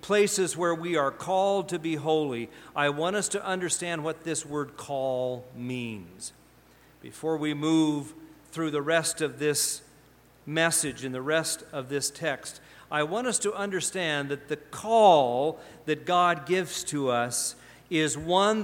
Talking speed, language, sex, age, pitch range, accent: 155 wpm, English, male, 50-69, 140-180 Hz, American